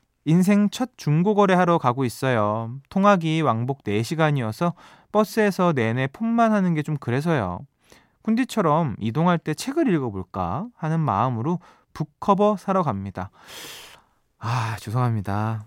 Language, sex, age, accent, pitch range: Korean, male, 20-39, native, 120-180 Hz